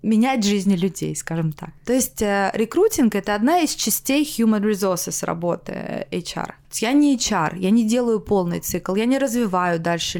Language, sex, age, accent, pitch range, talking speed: Russian, female, 20-39, native, 175-220 Hz, 170 wpm